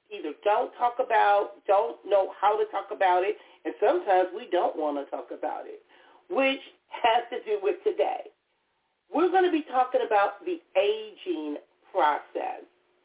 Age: 40-59